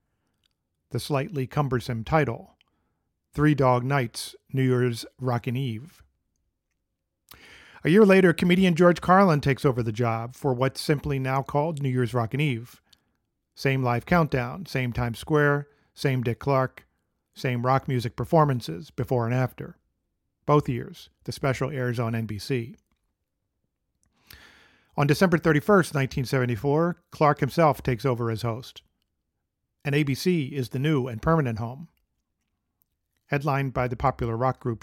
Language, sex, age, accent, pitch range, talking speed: English, male, 40-59, American, 115-150 Hz, 135 wpm